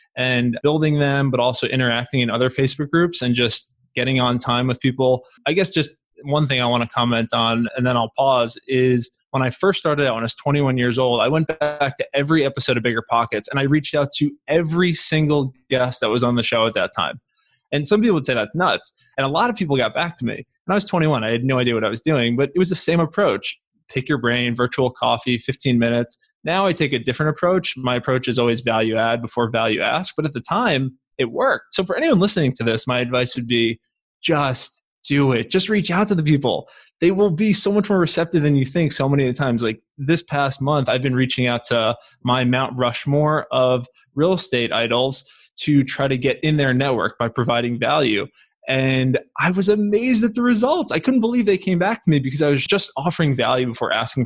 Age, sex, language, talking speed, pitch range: 20-39, male, English, 235 wpm, 120-155 Hz